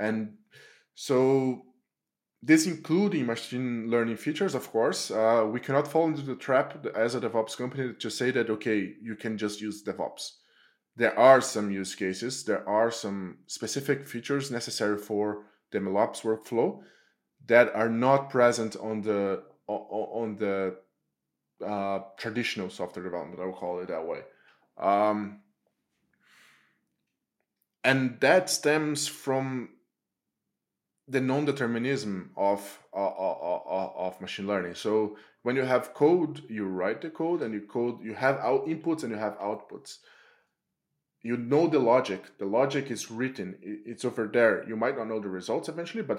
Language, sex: English, male